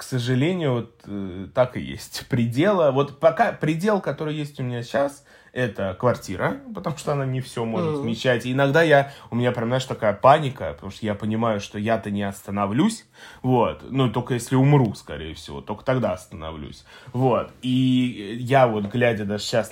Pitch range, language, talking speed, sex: 105-125 Hz, Russian, 175 wpm, male